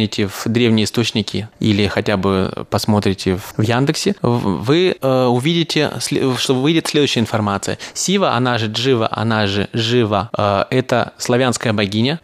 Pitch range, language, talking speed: 110-130 Hz, Russian, 125 wpm